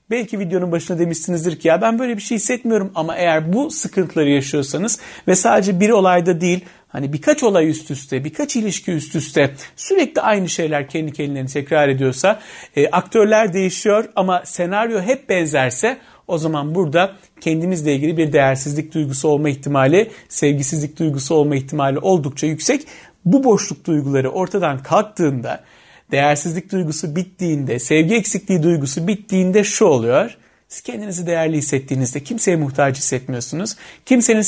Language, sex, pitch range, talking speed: Turkish, male, 145-205 Hz, 145 wpm